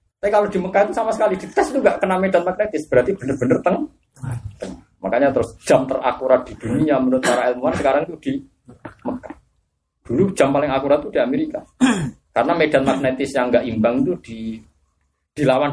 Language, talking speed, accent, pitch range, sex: Indonesian, 175 wpm, native, 105-180 Hz, male